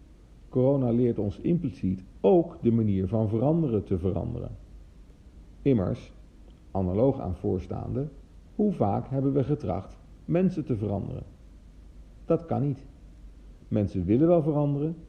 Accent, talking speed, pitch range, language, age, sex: Dutch, 120 wpm, 90-125 Hz, Dutch, 50-69, male